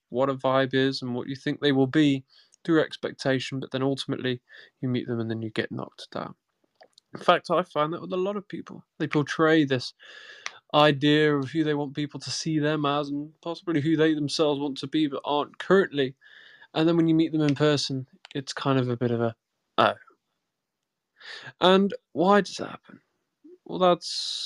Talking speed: 200 wpm